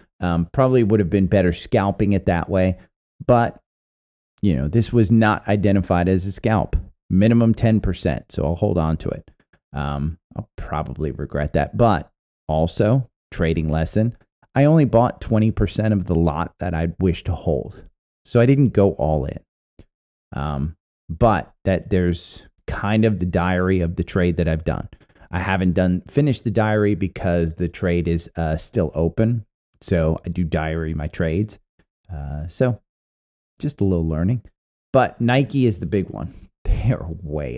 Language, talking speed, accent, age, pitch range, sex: English, 165 wpm, American, 30-49, 80-105 Hz, male